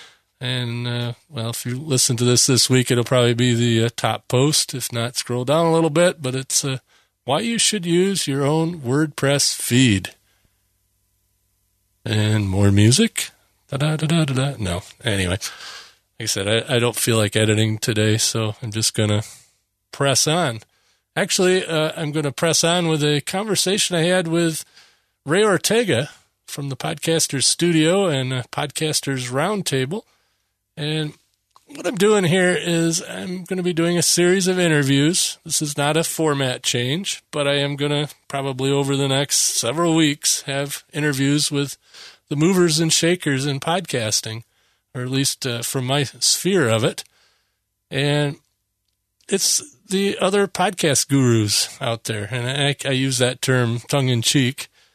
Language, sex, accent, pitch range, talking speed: English, male, American, 115-165 Hz, 160 wpm